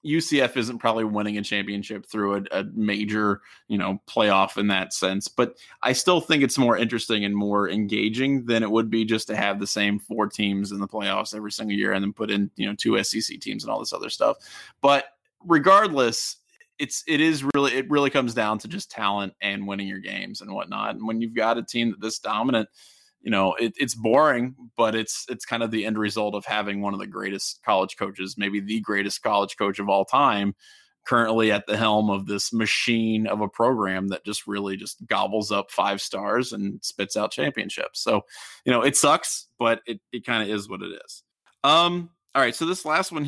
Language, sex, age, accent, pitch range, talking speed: English, male, 20-39, American, 105-135 Hz, 220 wpm